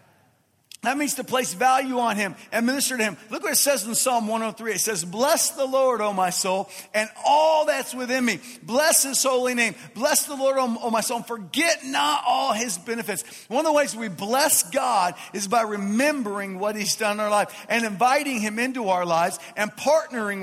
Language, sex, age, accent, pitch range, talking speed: English, male, 40-59, American, 210-265 Hz, 210 wpm